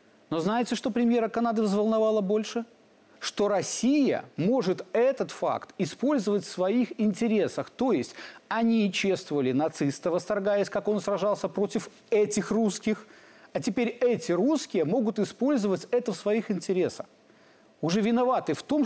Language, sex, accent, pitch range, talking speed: Russian, male, native, 190-235 Hz, 135 wpm